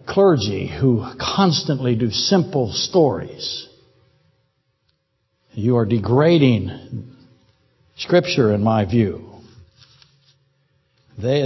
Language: English